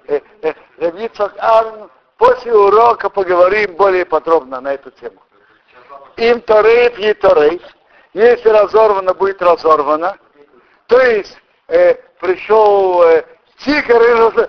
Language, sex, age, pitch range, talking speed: Russian, male, 60-79, 180-275 Hz, 85 wpm